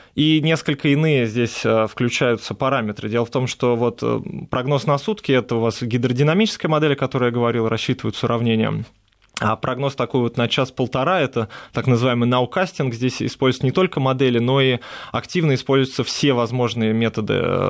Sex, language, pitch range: male, Russian, 115-140 Hz